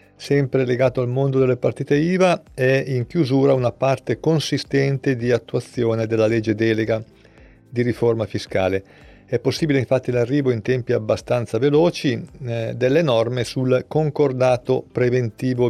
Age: 50-69